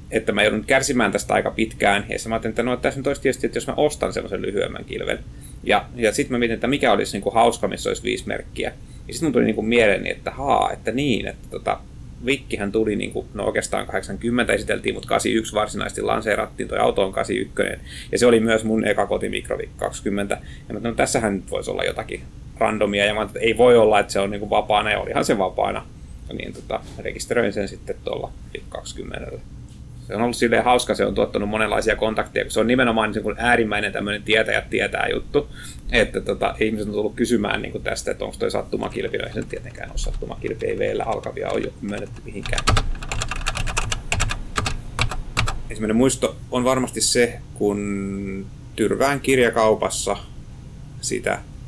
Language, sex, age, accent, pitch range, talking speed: Finnish, male, 30-49, native, 105-125 Hz, 180 wpm